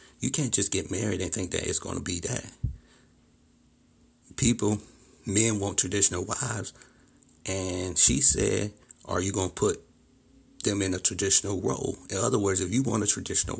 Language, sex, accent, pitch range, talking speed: English, male, American, 95-120 Hz, 170 wpm